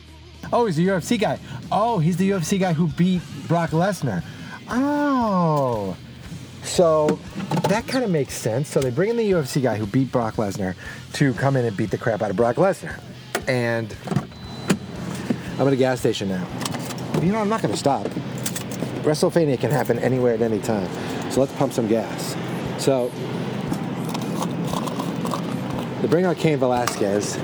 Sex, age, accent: male, 30-49, American